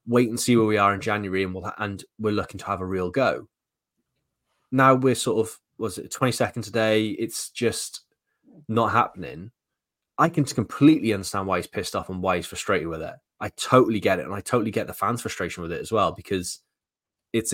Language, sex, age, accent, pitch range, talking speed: English, male, 20-39, British, 95-110 Hz, 220 wpm